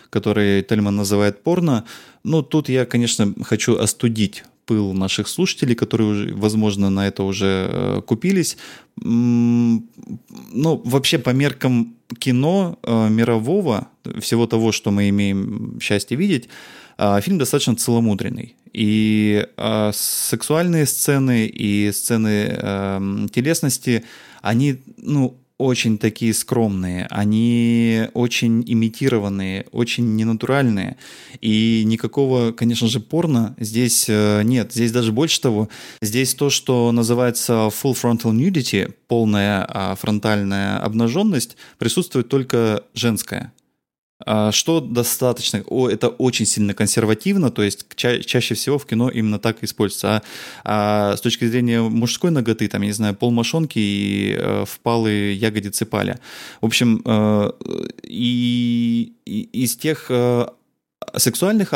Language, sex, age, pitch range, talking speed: Russian, male, 20-39, 105-125 Hz, 115 wpm